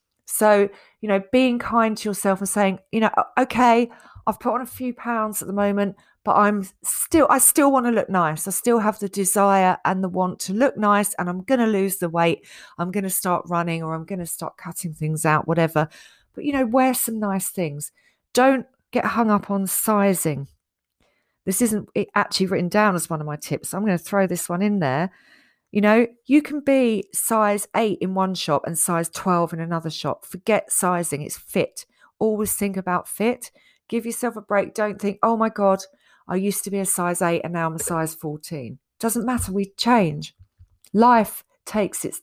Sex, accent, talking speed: female, British, 205 wpm